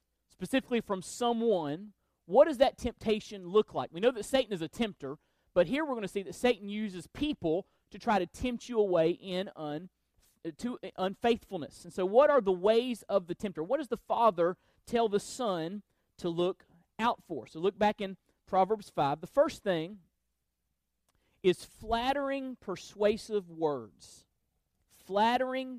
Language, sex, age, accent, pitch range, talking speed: English, male, 40-59, American, 170-230 Hz, 165 wpm